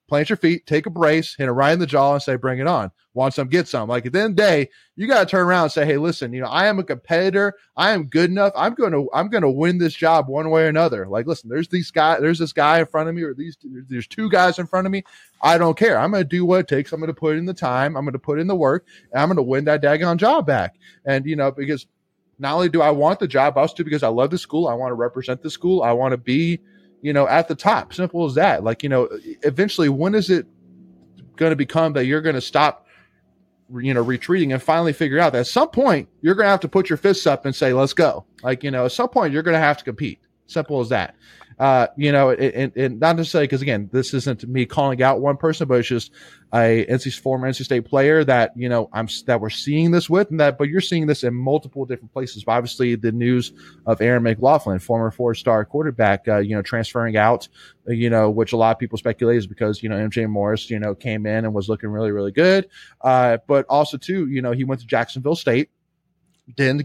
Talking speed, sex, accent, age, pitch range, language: 270 wpm, male, American, 20-39, 125-165 Hz, English